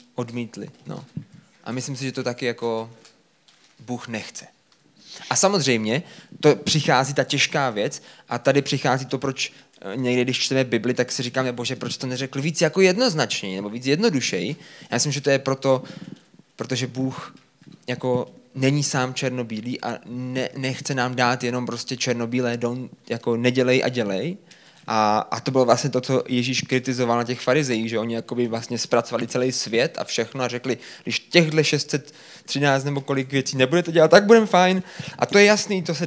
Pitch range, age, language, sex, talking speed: 120-140 Hz, 20-39, Czech, male, 175 wpm